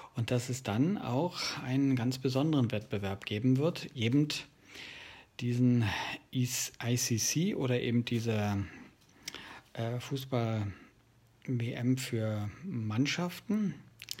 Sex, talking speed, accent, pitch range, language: male, 85 wpm, German, 115-140 Hz, German